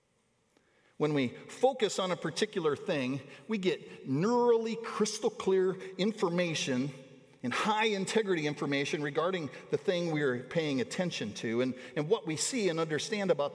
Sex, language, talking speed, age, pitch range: male, English, 145 wpm, 50-69, 140-210 Hz